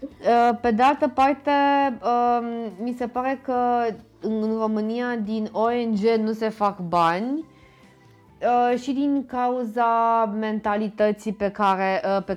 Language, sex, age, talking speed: Romanian, female, 20-39, 105 wpm